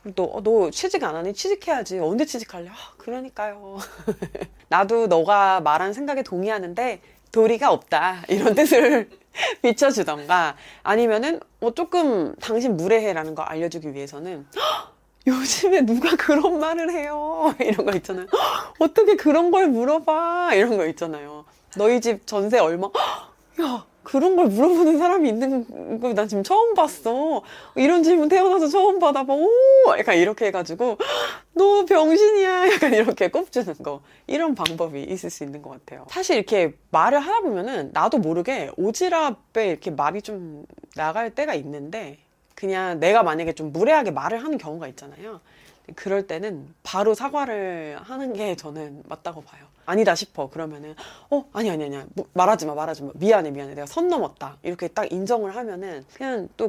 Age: 30-49